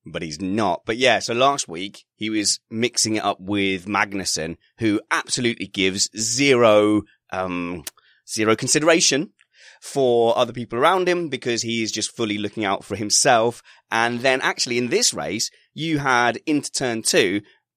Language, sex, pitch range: English, male, 100-135 Hz